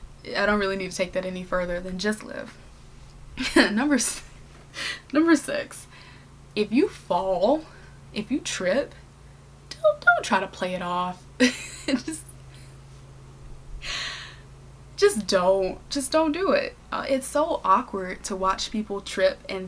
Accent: American